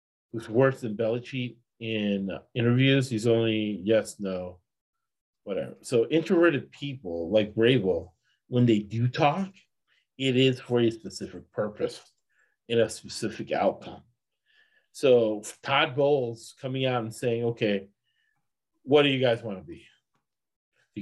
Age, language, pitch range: 40-59, English, 110-145 Hz